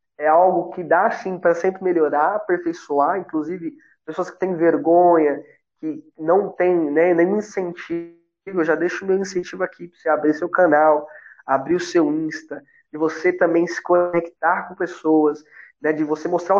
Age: 20-39